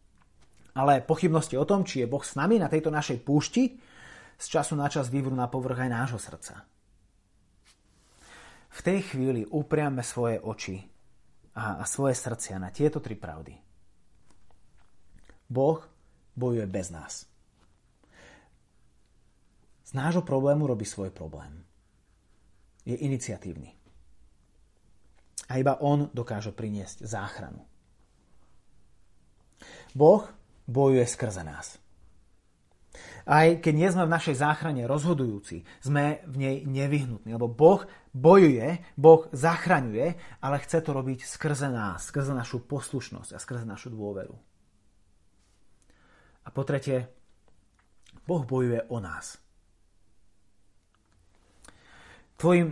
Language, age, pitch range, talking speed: Slovak, 30-49, 95-140 Hz, 110 wpm